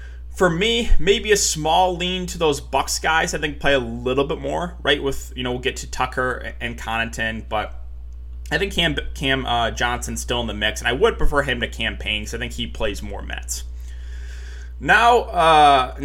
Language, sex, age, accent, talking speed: English, male, 20-39, American, 205 wpm